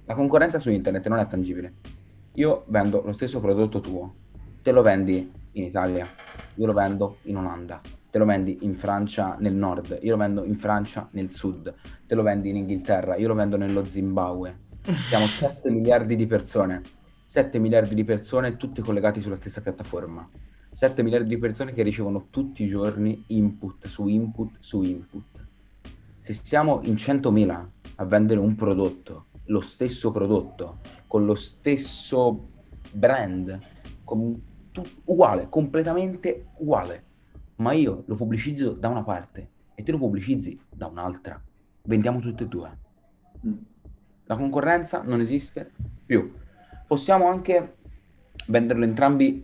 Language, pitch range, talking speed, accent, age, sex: Italian, 95-125 Hz, 145 wpm, native, 30-49, male